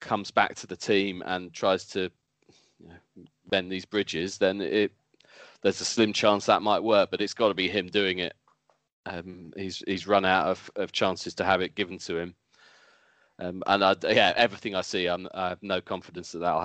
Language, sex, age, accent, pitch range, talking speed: English, male, 20-39, British, 100-115 Hz, 210 wpm